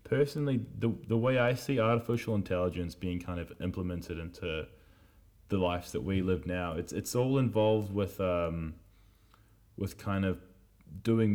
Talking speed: 155 wpm